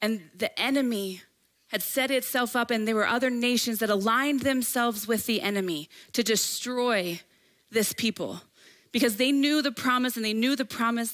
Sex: female